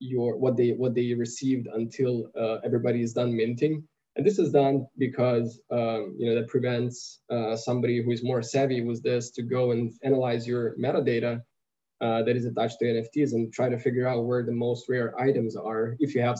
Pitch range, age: 115-130 Hz, 20-39